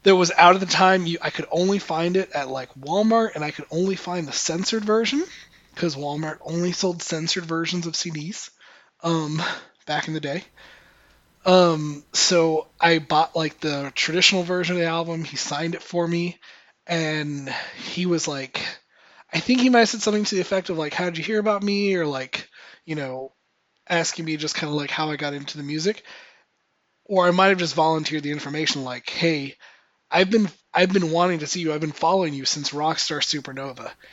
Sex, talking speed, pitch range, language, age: male, 200 wpm, 155-200 Hz, English, 20-39